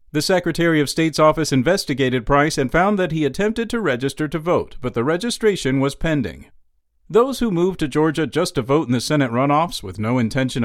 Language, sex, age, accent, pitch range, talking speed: English, male, 50-69, American, 135-190 Hz, 205 wpm